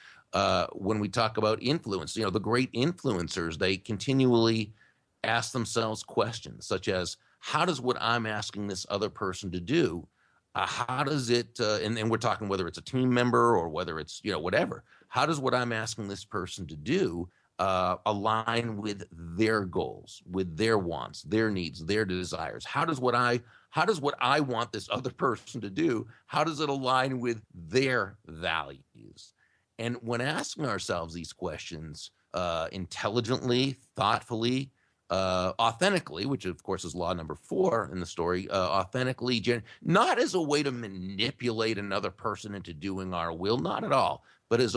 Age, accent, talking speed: 40-59, American, 175 wpm